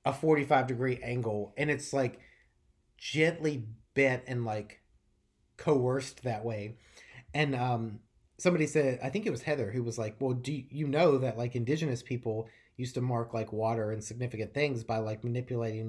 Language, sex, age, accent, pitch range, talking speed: English, male, 30-49, American, 115-145 Hz, 170 wpm